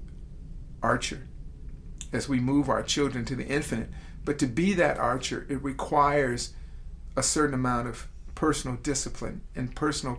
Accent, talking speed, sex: American, 140 wpm, male